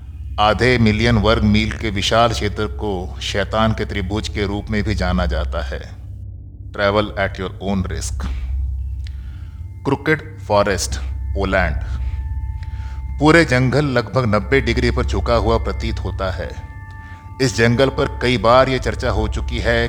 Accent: native